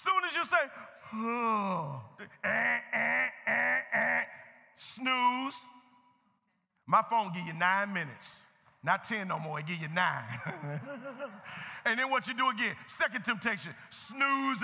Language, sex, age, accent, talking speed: English, male, 40-59, American, 140 wpm